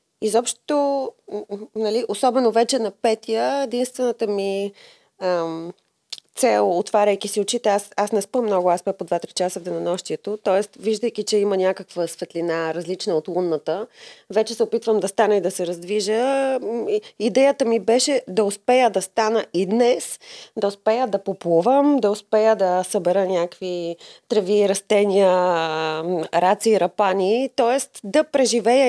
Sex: female